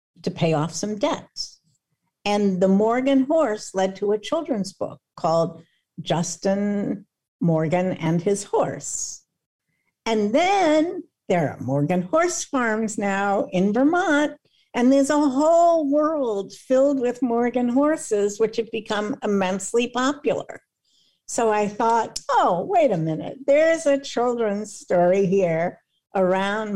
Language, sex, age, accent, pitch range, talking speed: English, female, 60-79, American, 165-230 Hz, 130 wpm